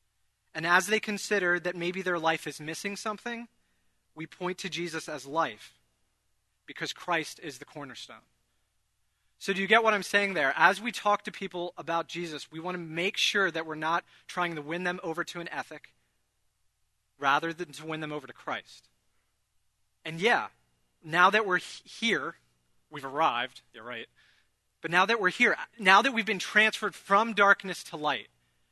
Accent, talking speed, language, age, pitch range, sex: American, 180 wpm, English, 30-49, 135-185 Hz, male